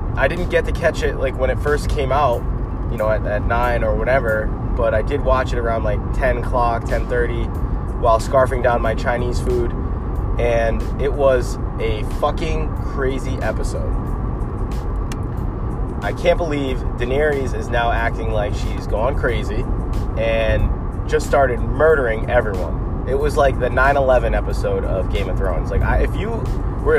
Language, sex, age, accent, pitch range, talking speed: English, male, 20-39, American, 105-130 Hz, 160 wpm